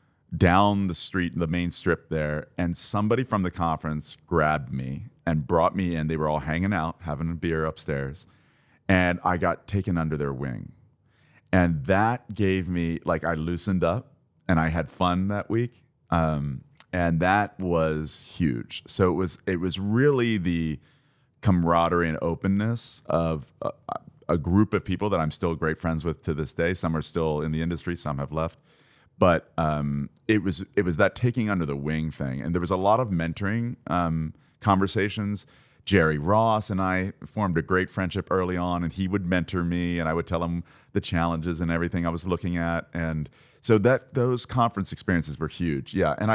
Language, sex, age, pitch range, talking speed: English, male, 30-49, 80-100 Hz, 190 wpm